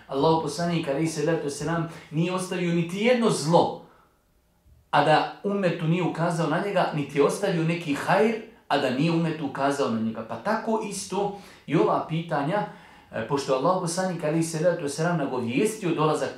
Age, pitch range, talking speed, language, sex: 40-59, 135-180 Hz, 150 wpm, English, male